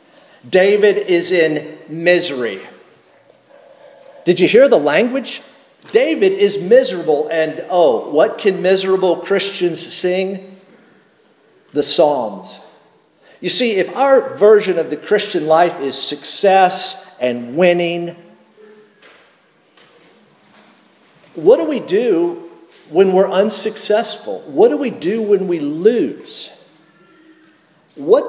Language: English